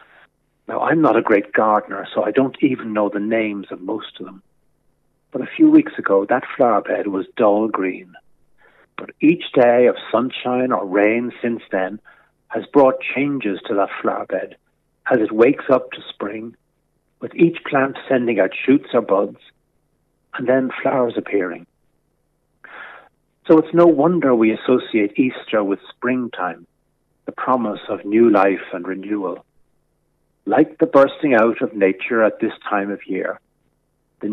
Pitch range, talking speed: 105-135 Hz, 155 wpm